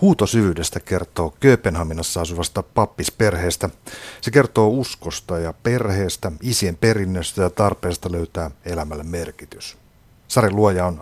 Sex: male